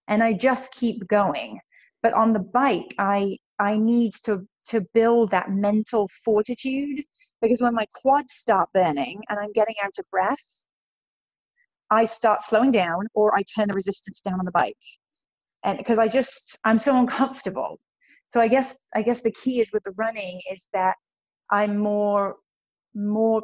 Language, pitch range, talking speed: English, 200-240 Hz, 170 wpm